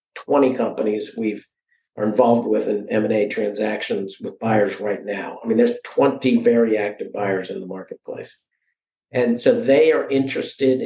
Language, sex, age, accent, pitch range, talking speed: English, male, 50-69, American, 120-150 Hz, 155 wpm